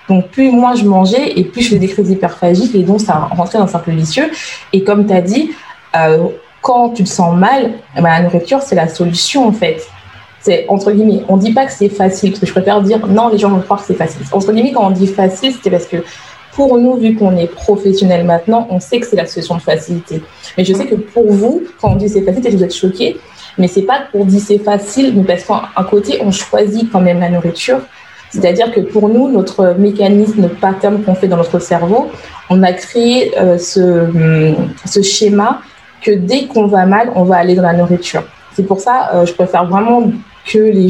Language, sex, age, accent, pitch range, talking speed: French, female, 20-39, French, 180-220 Hz, 235 wpm